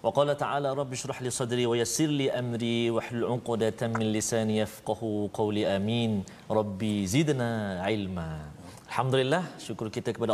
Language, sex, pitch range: Malayalam, male, 110-130 Hz